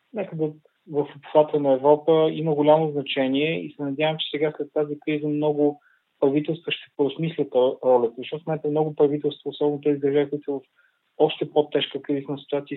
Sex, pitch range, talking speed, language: male, 135-150 Hz, 165 wpm, Bulgarian